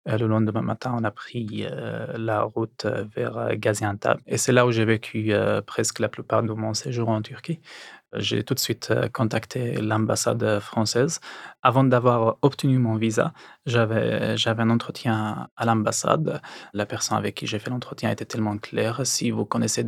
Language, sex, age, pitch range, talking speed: French, male, 20-39, 110-120 Hz, 165 wpm